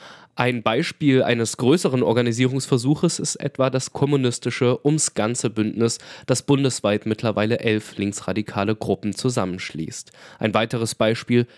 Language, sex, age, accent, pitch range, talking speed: German, male, 20-39, German, 115-150 Hz, 105 wpm